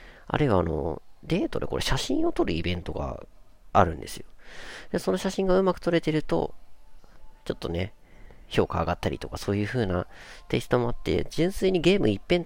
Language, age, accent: Japanese, 40-59, native